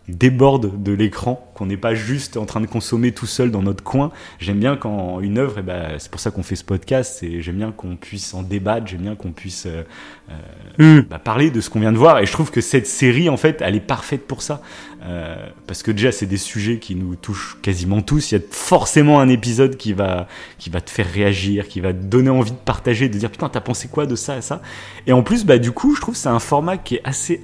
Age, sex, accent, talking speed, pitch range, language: 30-49, male, French, 265 wpm, 105-140 Hz, French